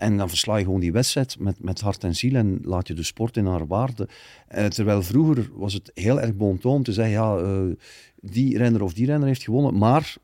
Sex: male